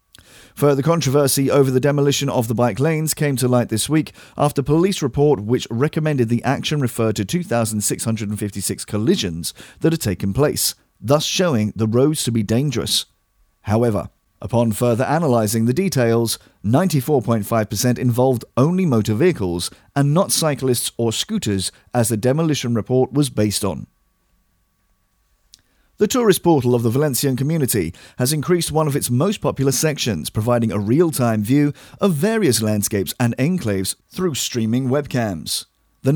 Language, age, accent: English, 40-59, British